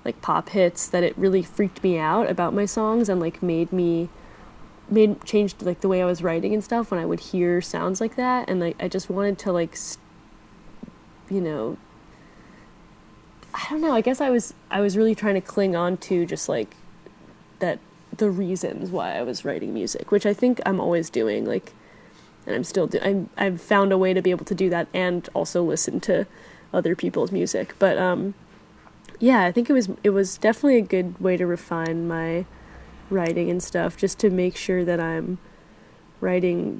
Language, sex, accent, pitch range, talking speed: English, female, American, 175-205 Hz, 200 wpm